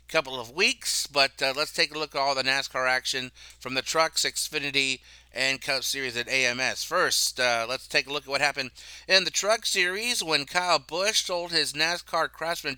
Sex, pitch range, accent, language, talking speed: male, 145-185 Hz, American, English, 200 wpm